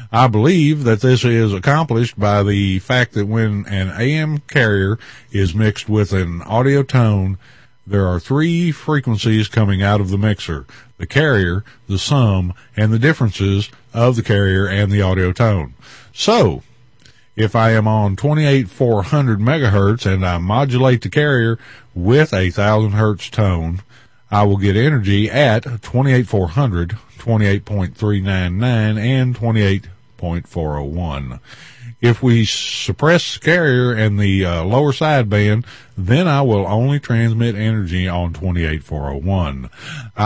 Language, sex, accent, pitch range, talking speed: English, male, American, 100-130 Hz, 135 wpm